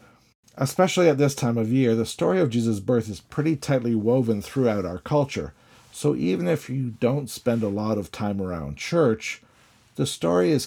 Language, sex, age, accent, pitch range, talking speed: English, male, 50-69, American, 100-135 Hz, 185 wpm